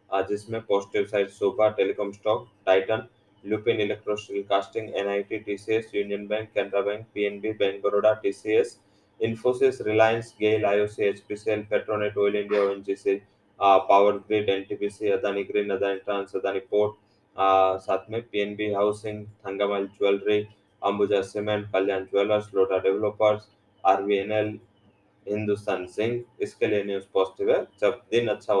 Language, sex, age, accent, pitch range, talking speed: English, male, 20-39, Indian, 100-110 Hz, 85 wpm